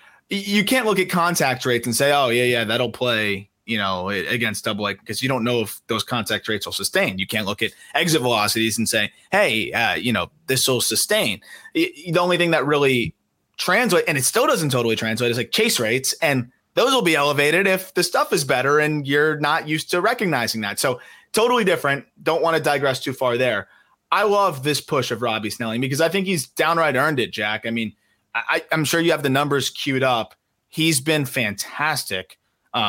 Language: English